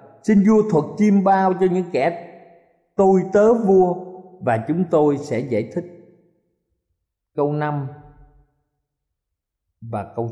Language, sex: Vietnamese, male